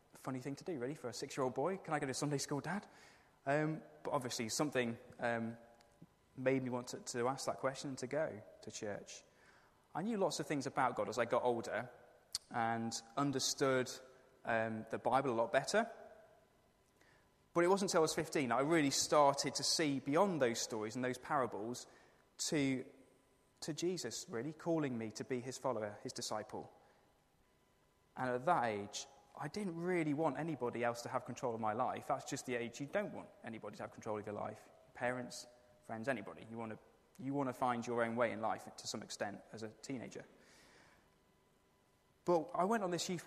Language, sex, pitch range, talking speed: English, male, 120-150 Hz, 190 wpm